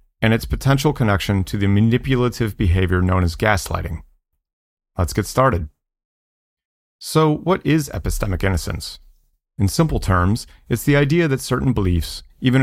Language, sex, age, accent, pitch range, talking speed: English, male, 30-49, American, 90-115 Hz, 140 wpm